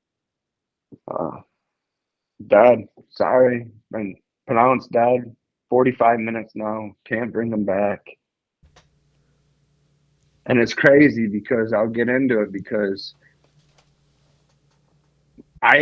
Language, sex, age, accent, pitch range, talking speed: English, male, 30-49, American, 115-150 Hz, 85 wpm